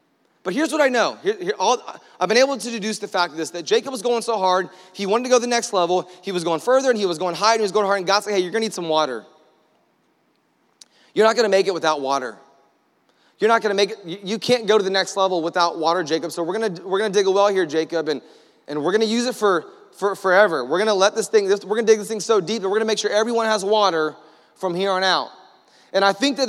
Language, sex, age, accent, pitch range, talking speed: English, male, 20-39, American, 195-230 Hz, 295 wpm